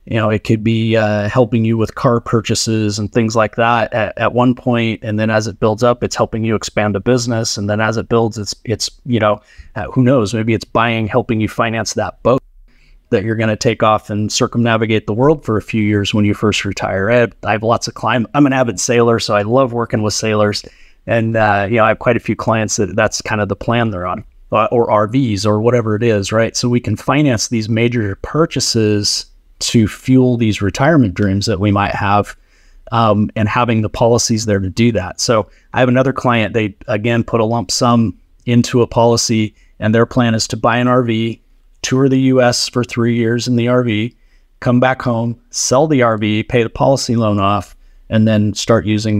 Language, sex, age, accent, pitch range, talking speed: English, male, 30-49, American, 105-120 Hz, 220 wpm